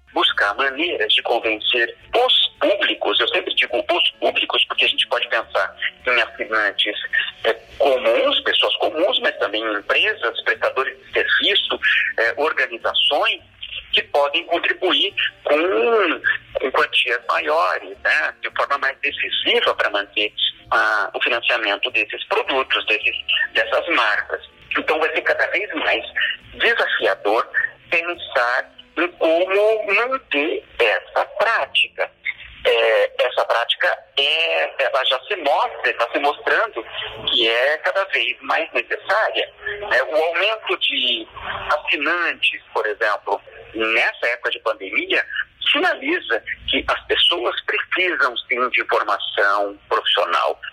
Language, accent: Portuguese, Brazilian